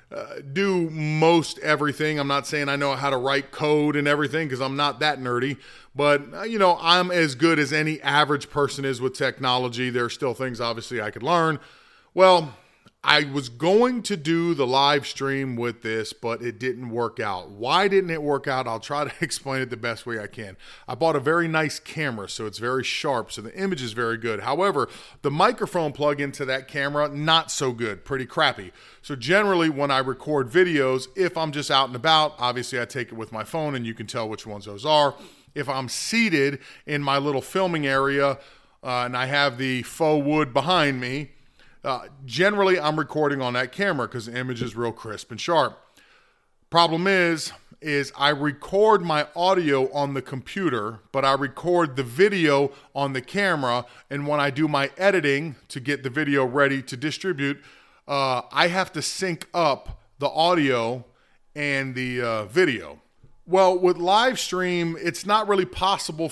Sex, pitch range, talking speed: male, 130-165 Hz, 190 wpm